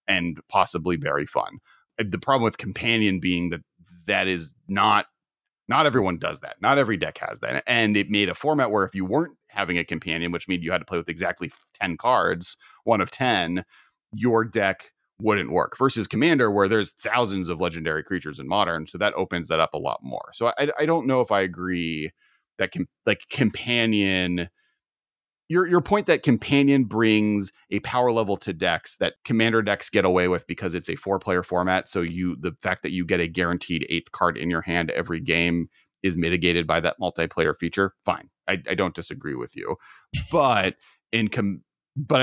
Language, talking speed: English, 195 wpm